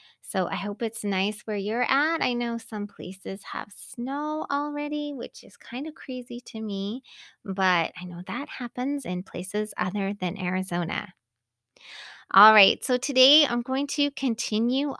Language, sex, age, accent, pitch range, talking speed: English, female, 30-49, American, 195-255 Hz, 160 wpm